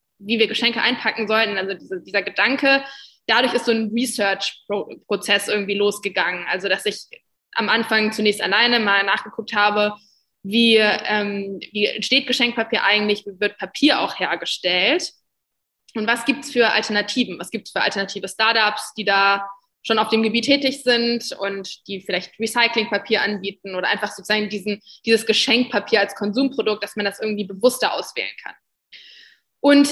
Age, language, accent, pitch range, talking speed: 20-39, German, German, 205-235 Hz, 155 wpm